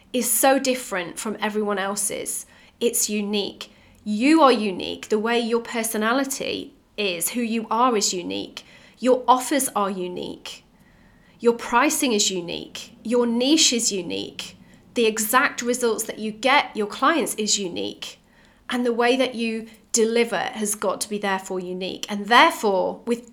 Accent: British